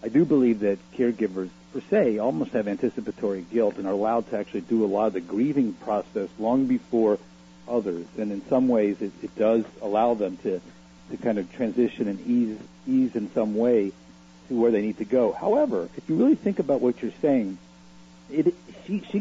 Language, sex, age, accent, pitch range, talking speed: English, male, 50-69, American, 100-150 Hz, 200 wpm